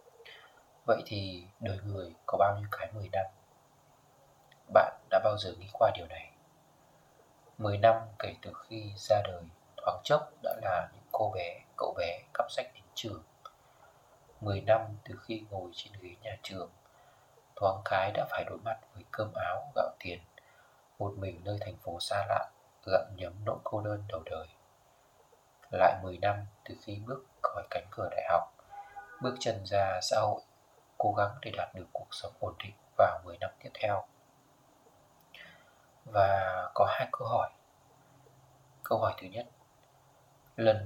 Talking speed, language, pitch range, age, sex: 165 wpm, Vietnamese, 100-115 Hz, 20-39, male